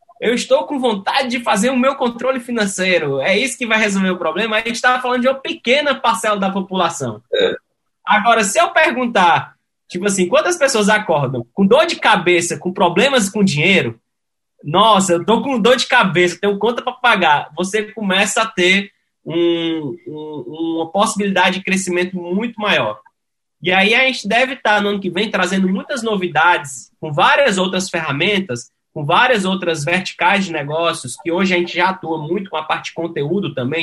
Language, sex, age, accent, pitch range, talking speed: English, male, 20-39, Brazilian, 160-210 Hz, 180 wpm